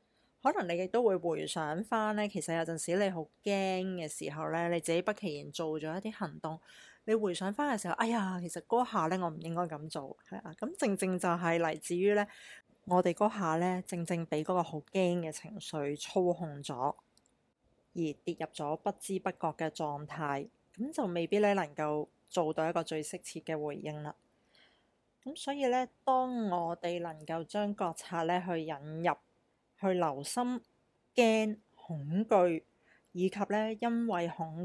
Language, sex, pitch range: Chinese, female, 165-200 Hz